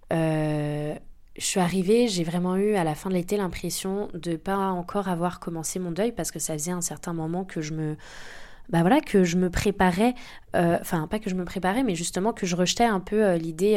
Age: 20-39